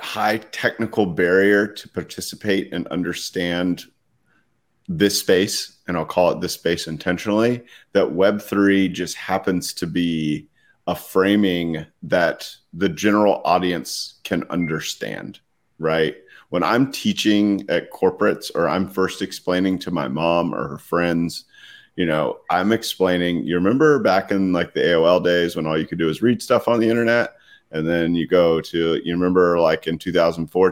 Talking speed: 155 wpm